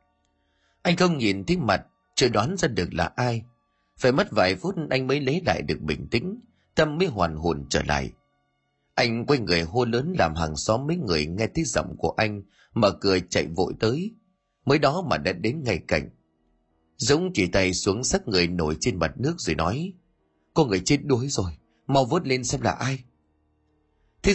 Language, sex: Vietnamese, male